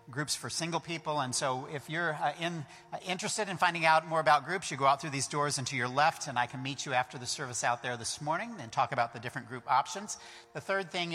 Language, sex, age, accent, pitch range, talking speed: English, male, 50-69, American, 125-155 Hz, 270 wpm